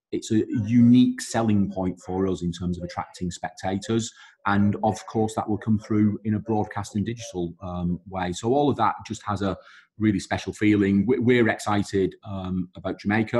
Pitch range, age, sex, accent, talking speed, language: 95-105 Hz, 30-49, male, British, 185 wpm, English